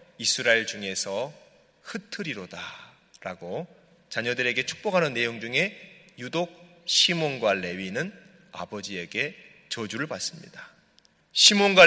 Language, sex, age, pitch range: Korean, male, 30-49, 120-170 Hz